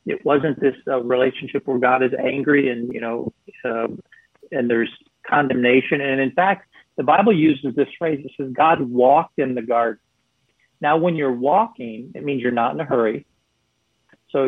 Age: 40-59